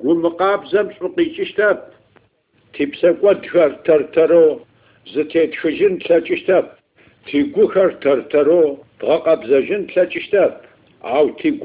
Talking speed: 90 wpm